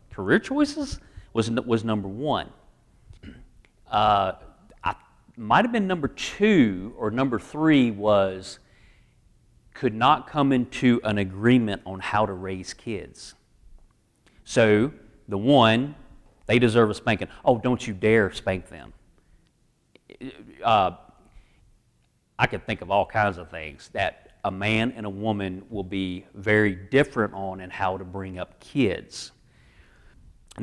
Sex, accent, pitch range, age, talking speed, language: male, American, 95-130 Hz, 40-59, 135 wpm, English